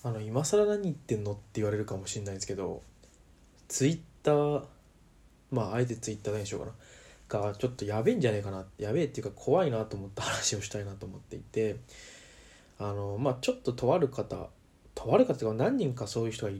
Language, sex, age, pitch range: Japanese, male, 20-39, 100-135 Hz